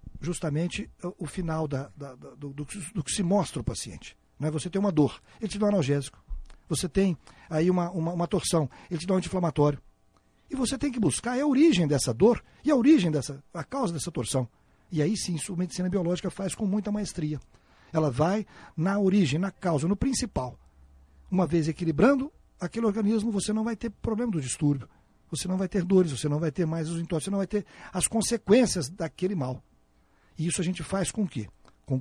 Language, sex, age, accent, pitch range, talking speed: Portuguese, male, 60-79, Brazilian, 150-200 Hz, 215 wpm